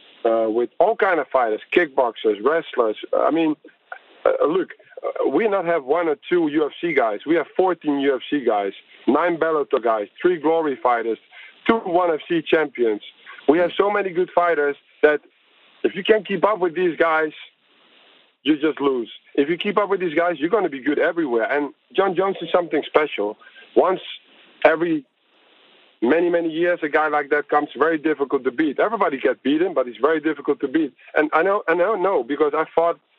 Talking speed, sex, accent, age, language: 190 wpm, male, Dutch, 50-69, English